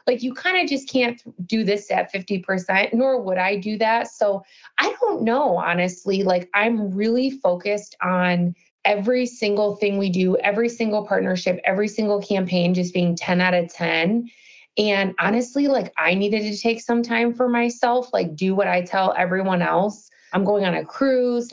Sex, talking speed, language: female, 180 wpm, English